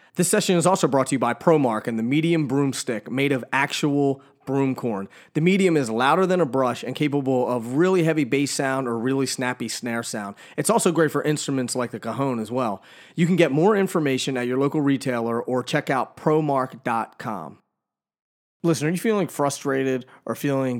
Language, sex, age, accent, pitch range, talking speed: English, male, 30-49, American, 115-145 Hz, 190 wpm